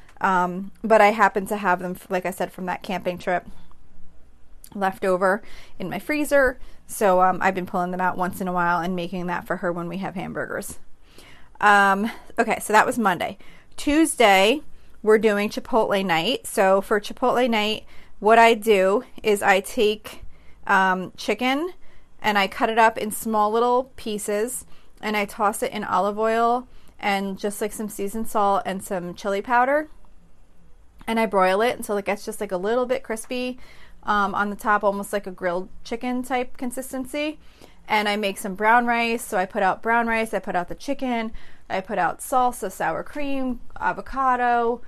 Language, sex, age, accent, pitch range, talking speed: English, female, 30-49, American, 190-235 Hz, 180 wpm